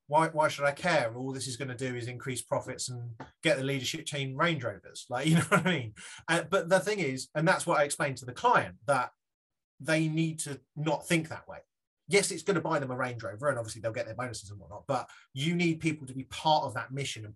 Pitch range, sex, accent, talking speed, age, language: 125-165 Hz, male, British, 265 wpm, 30-49, English